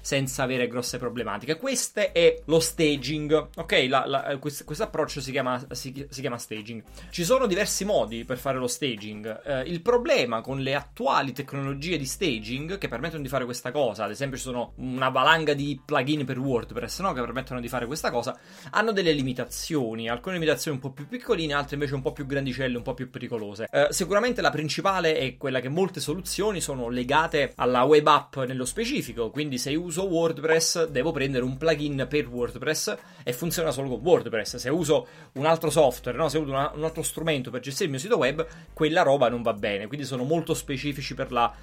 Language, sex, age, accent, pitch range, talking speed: Italian, male, 20-39, native, 130-160 Hz, 195 wpm